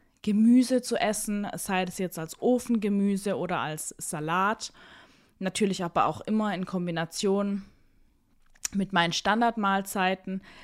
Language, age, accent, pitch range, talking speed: German, 20-39, German, 175-215 Hz, 115 wpm